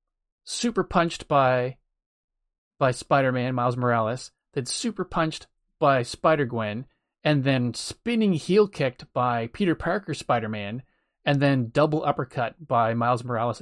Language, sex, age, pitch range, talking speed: English, male, 30-49, 120-155 Hz, 125 wpm